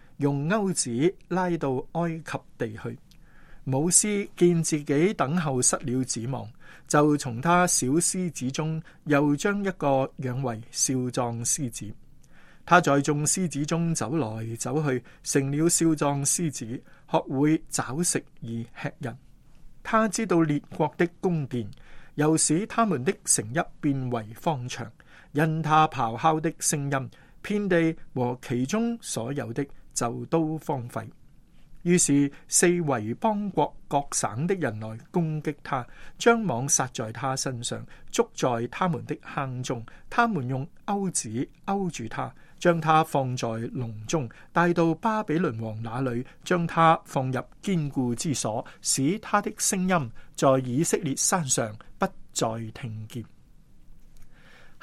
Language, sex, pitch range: Chinese, male, 130-170 Hz